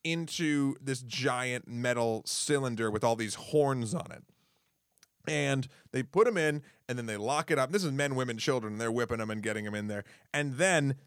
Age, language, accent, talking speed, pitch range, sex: 30-49, English, American, 200 wpm, 120-155 Hz, male